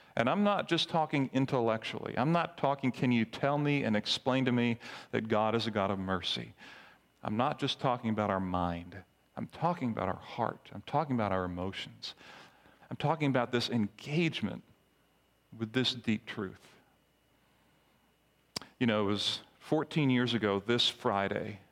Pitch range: 95-125 Hz